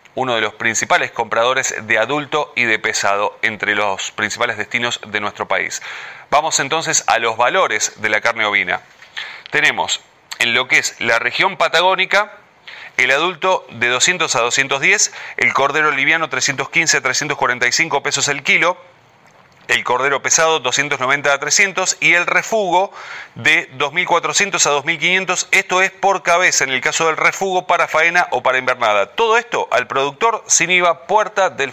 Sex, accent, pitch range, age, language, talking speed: male, Argentinian, 130-180 Hz, 30-49, Spanish, 160 wpm